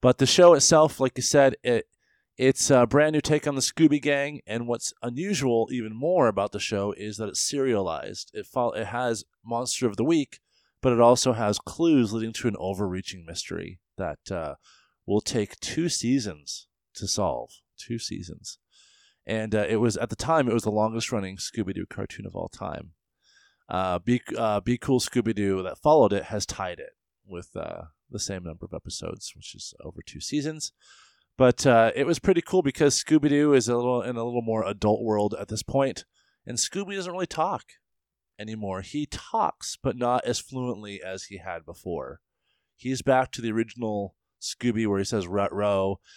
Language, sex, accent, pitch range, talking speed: English, male, American, 100-135 Hz, 190 wpm